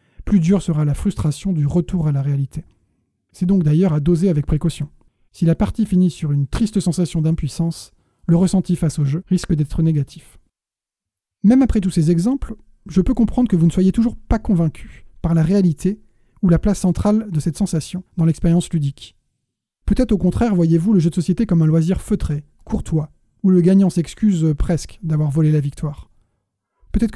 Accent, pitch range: French, 150-185 Hz